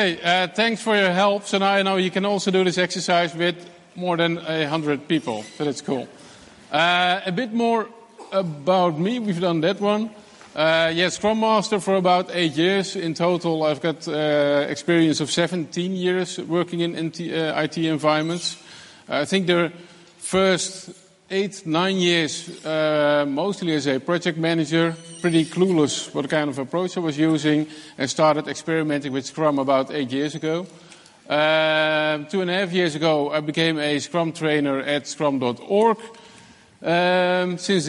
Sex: male